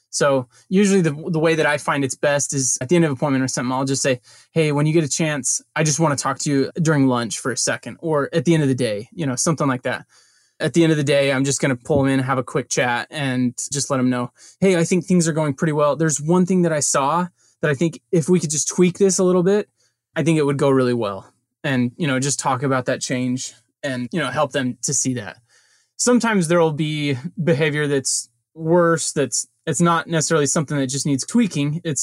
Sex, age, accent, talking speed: male, 20-39, American, 260 wpm